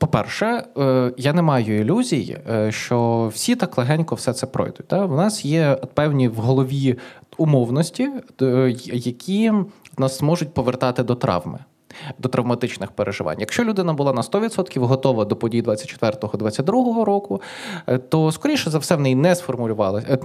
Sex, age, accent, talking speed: male, 20-39, native, 135 wpm